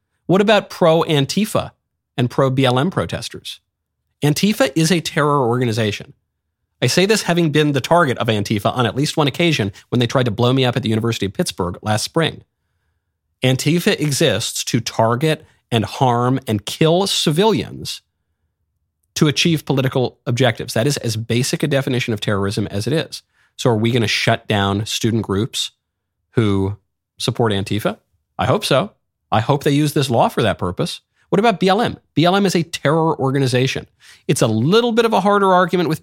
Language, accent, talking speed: English, American, 175 wpm